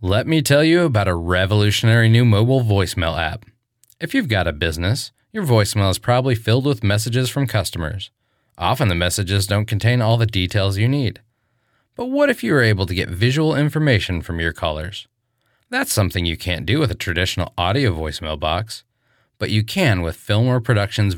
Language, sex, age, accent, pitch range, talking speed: English, male, 30-49, American, 90-120 Hz, 185 wpm